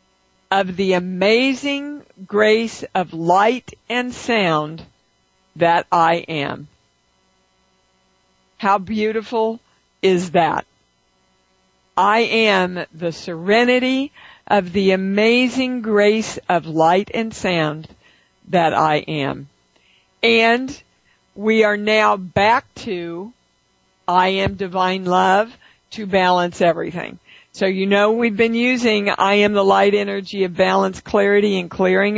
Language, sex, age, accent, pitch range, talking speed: English, female, 50-69, American, 175-215 Hz, 110 wpm